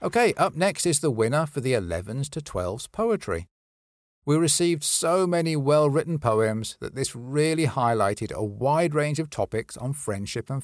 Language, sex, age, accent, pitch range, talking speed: English, male, 50-69, British, 110-155 Hz, 170 wpm